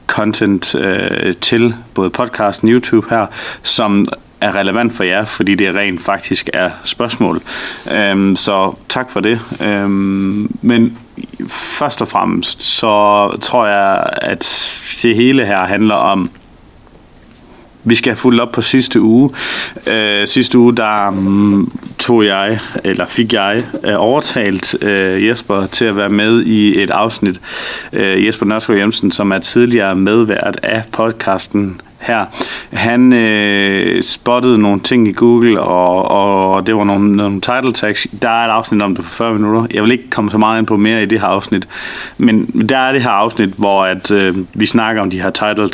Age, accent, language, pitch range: 30-49, native, Danish, 100-115 Hz